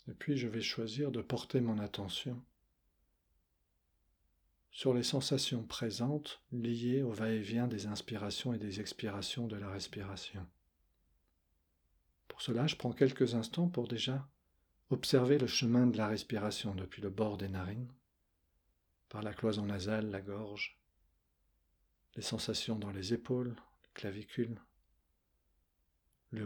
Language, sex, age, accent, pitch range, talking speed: French, male, 40-59, French, 75-115 Hz, 130 wpm